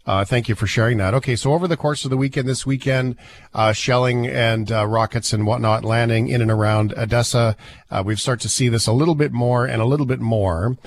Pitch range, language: 105-130 Hz, English